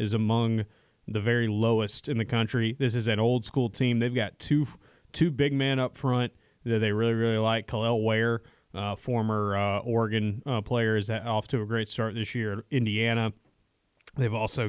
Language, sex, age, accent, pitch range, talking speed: English, male, 20-39, American, 110-125 Hz, 185 wpm